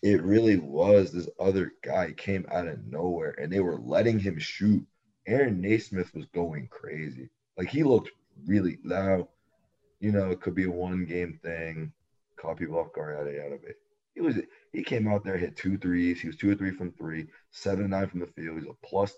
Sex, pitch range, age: male, 85-100 Hz, 30-49